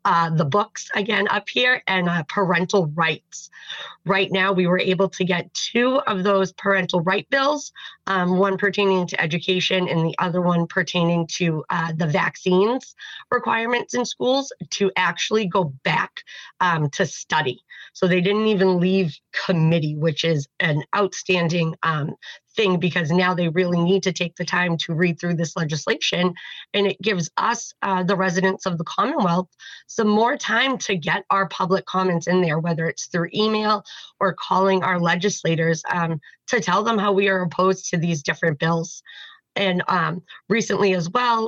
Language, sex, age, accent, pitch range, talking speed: English, female, 30-49, American, 170-195 Hz, 170 wpm